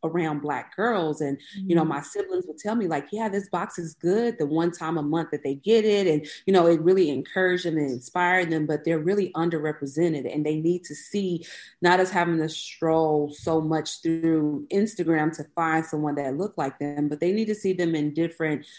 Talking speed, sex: 220 wpm, female